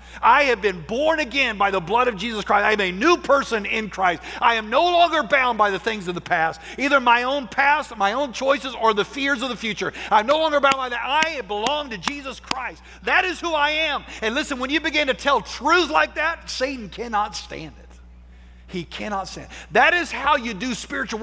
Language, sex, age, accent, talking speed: English, male, 50-69, American, 230 wpm